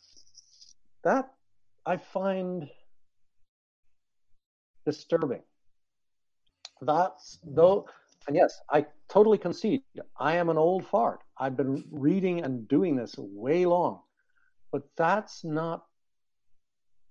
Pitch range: 130-180 Hz